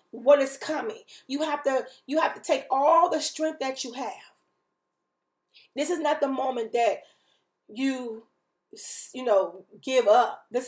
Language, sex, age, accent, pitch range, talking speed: English, female, 40-59, American, 235-305 Hz, 155 wpm